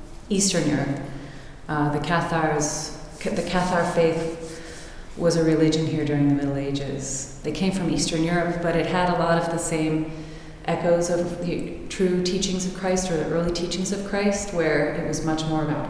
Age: 30-49